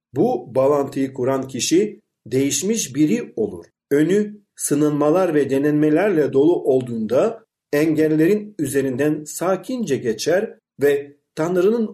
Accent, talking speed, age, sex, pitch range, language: native, 95 wpm, 50-69, male, 135-190 Hz, Turkish